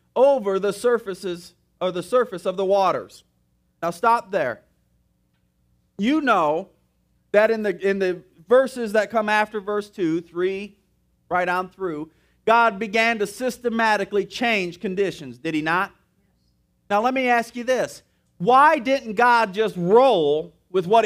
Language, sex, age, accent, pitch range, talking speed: English, male, 40-59, American, 165-275 Hz, 145 wpm